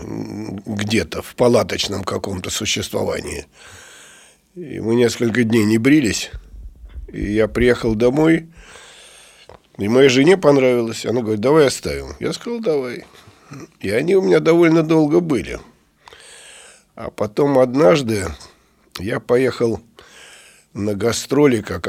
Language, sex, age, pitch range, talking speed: Russian, male, 50-69, 100-125 Hz, 110 wpm